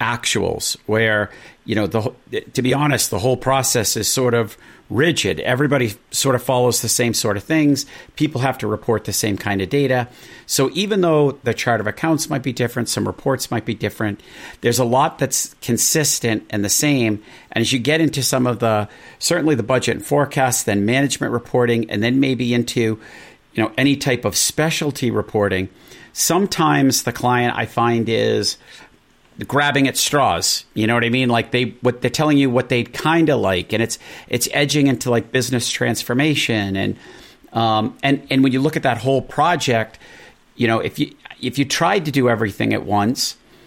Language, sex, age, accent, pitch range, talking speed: English, male, 50-69, American, 115-145 Hz, 195 wpm